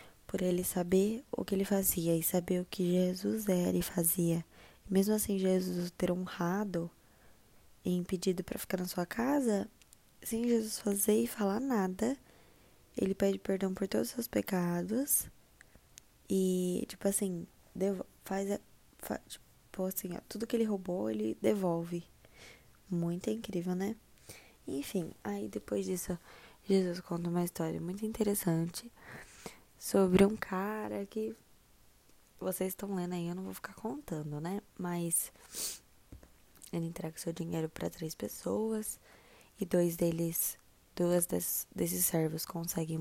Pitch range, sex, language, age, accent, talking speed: 170-200 Hz, female, Portuguese, 10-29, Brazilian, 140 wpm